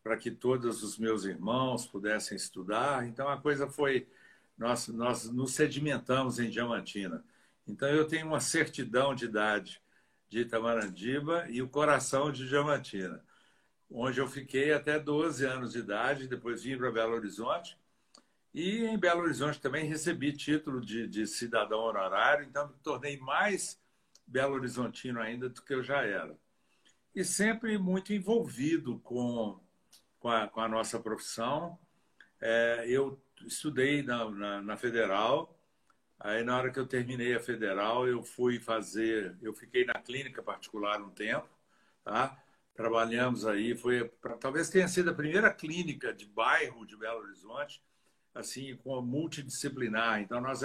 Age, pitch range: 60-79, 115-145 Hz